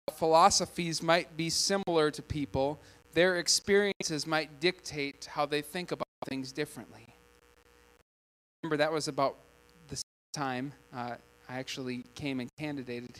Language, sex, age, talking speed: English, male, 20-39, 135 wpm